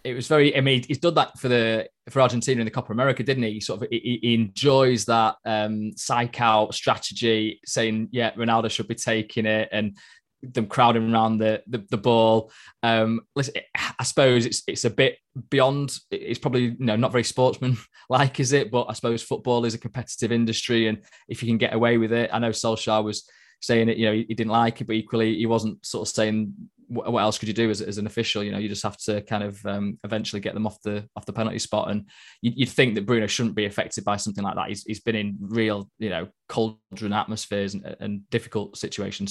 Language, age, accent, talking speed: English, 20-39, British, 230 wpm